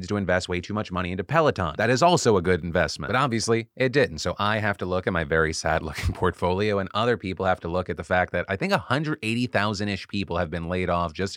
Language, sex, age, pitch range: English, male, 30-49, 95-125 Hz